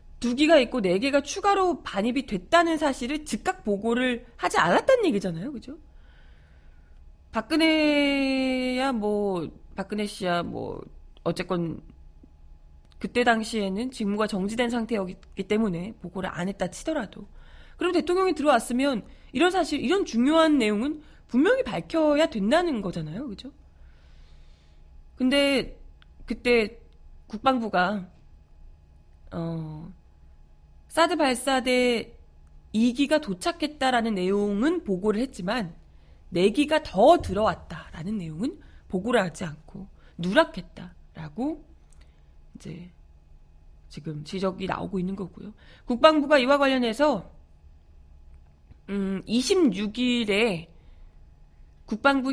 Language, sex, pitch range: Korean, female, 170-270 Hz